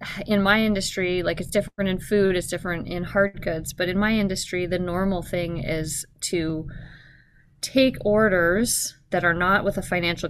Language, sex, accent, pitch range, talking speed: English, female, American, 155-195 Hz, 175 wpm